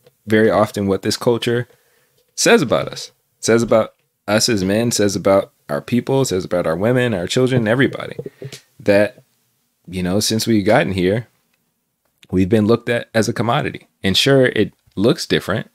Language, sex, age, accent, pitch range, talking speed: English, male, 30-49, American, 90-110 Hz, 165 wpm